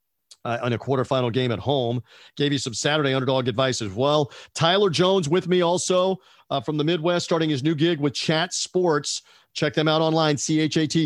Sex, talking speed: male, 195 wpm